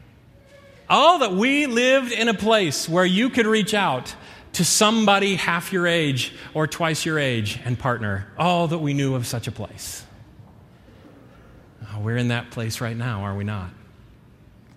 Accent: American